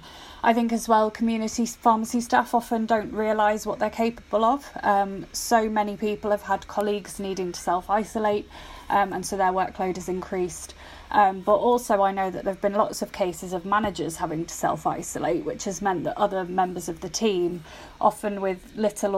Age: 20-39